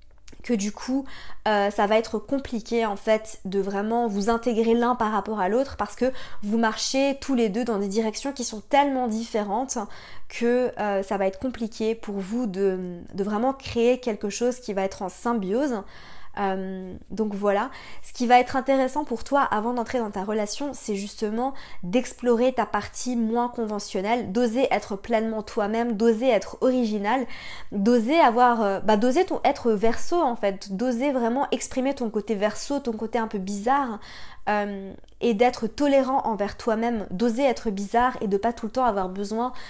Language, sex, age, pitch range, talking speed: French, female, 20-39, 205-245 Hz, 175 wpm